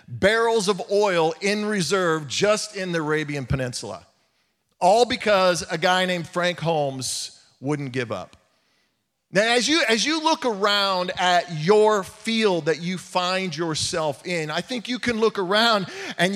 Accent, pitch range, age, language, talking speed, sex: American, 160-225 Hz, 40-59, English, 155 wpm, male